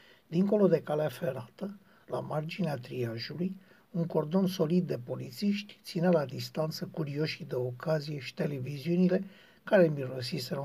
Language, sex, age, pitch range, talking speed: Romanian, male, 60-79, 135-175 Hz, 125 wpm